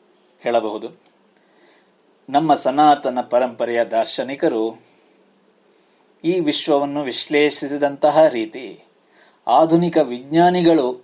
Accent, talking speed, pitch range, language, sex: native, 55 wpm, 120-155 Hz, Kannada, male